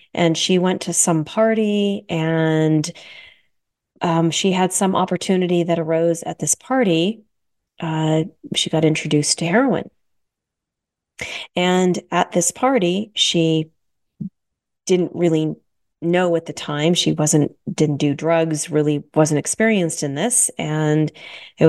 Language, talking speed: English, 125 wpm